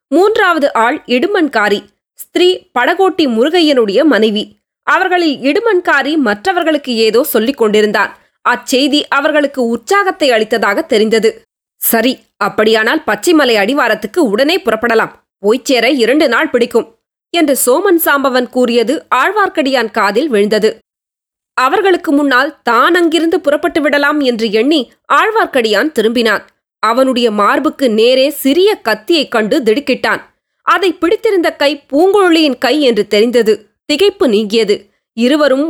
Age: 20-39